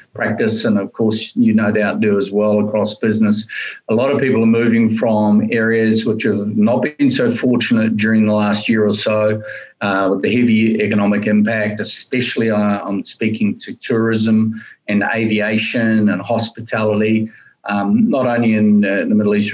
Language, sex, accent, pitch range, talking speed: English, male, Australian, 105-120 Hz, 170 wpm